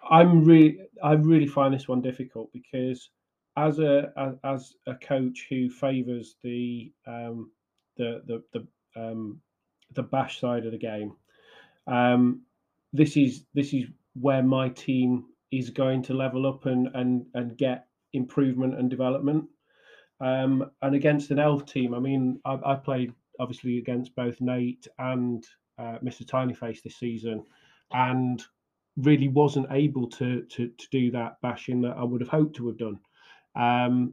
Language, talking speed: English, 160 wpm